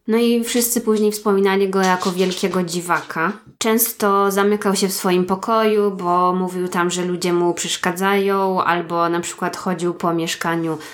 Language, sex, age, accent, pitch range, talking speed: Polish, female, 20-39, native, 170-200 Hz, 155 wpm